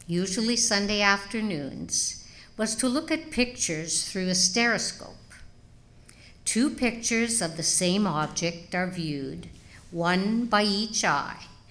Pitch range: 160-210 Hz